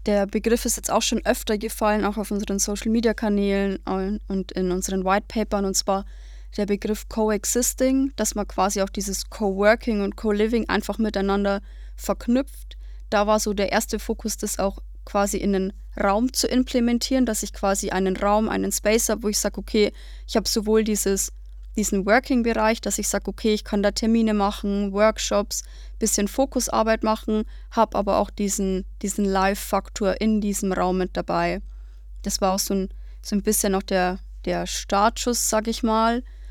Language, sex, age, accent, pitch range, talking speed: German, female, 20-39, German, 195-220 Hz, 170 wpm